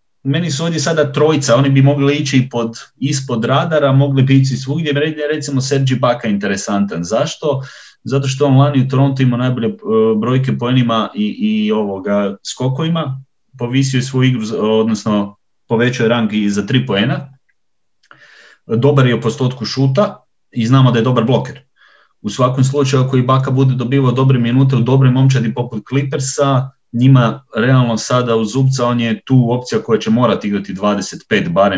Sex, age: male, 30-49